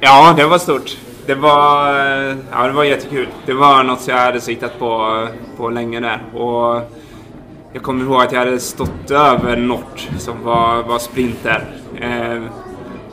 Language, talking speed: Swedish, 165 wpm